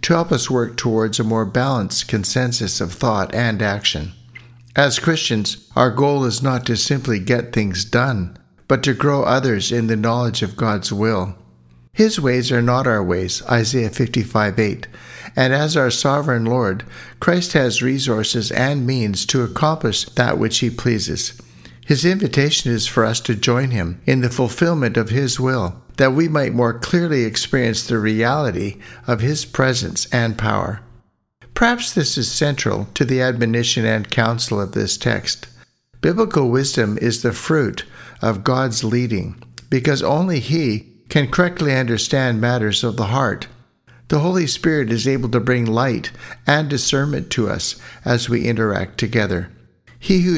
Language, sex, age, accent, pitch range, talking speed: English, male, 60-79, American, 110-135 Hz, 160 wpm